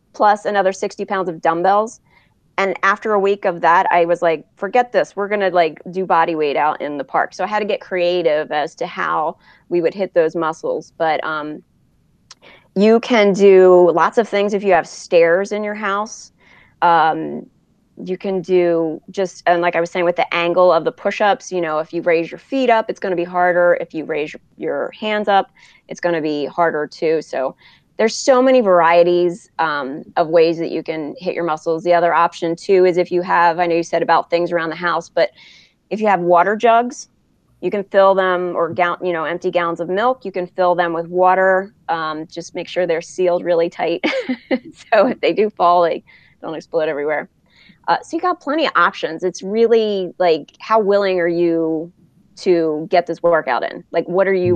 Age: 30-49